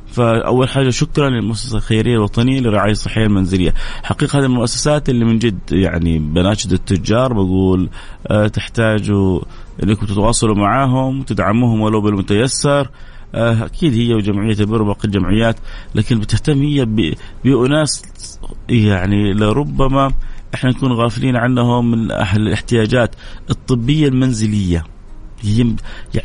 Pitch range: 105-130 Hz